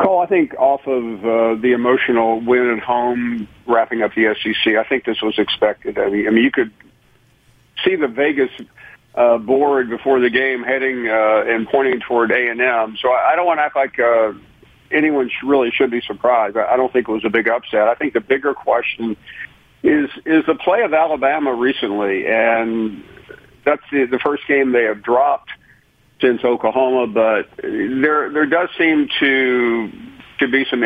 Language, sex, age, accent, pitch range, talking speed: English, male, 50-69, American, 115-135 Hz, 175 wpm